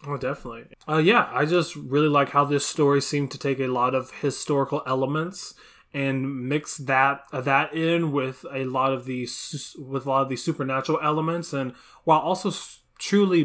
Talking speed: 185 wpm